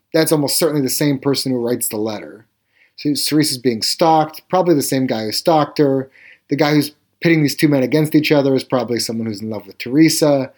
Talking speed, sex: 220 wpm, male